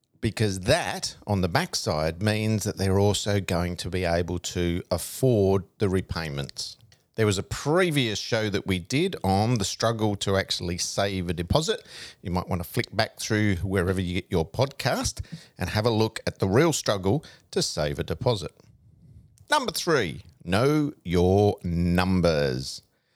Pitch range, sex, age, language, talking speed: 95-120 Hz, male, 50-69, English, 160 wpm